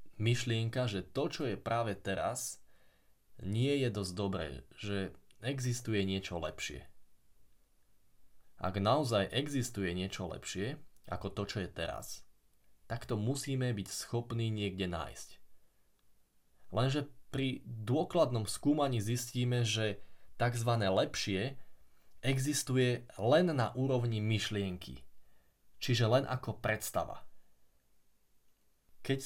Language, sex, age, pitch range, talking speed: Slovak, male, 20-39, 95-120 Hz, 105 wpm